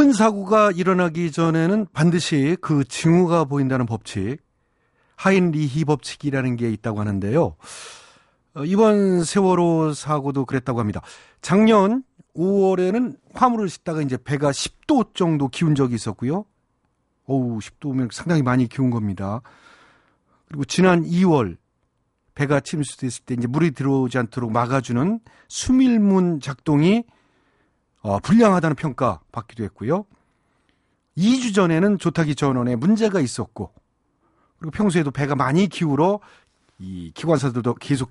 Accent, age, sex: native, 40-59, male